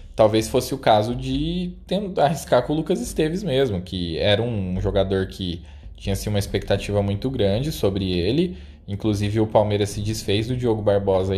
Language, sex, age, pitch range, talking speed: Portuguese, male, 20-39, 95-130 Hz, 165 wpm